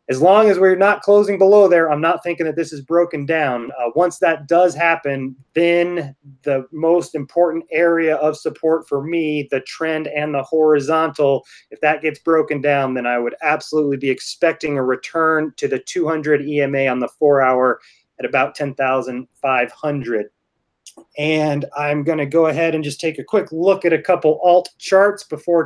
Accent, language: American, English